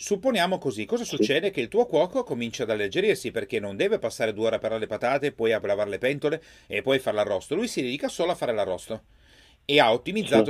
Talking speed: 235 wpm